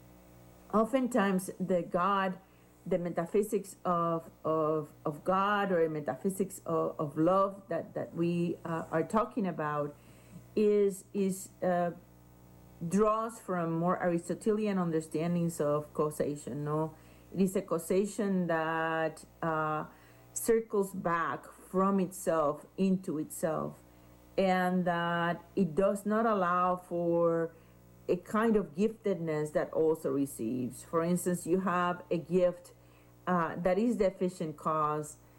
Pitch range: 155-190 Hz